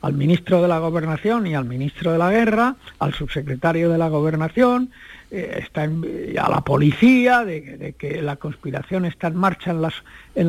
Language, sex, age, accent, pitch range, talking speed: Spanish, male, 60-79, Spanish, 145-200 Hz, 190 wpm